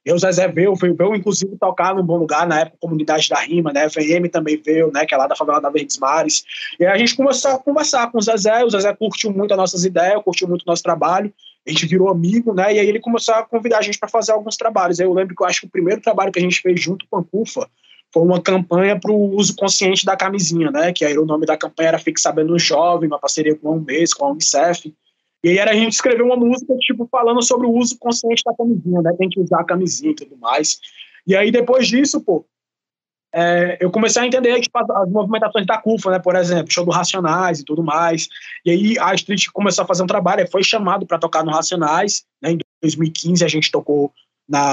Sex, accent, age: male, Brazilian, 20-39